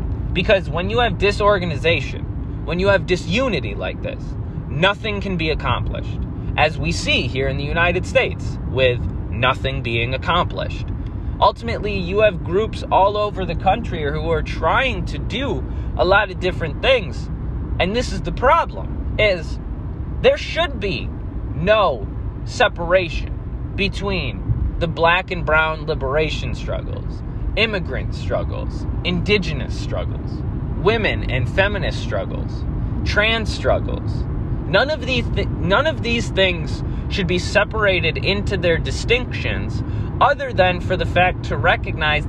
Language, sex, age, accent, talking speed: English, male, 20-39, American, 135 wpm